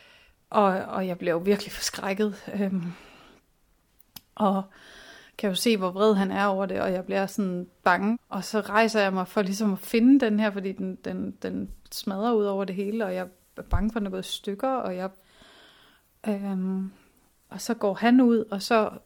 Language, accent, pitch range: Danish, native, 195-220 Hz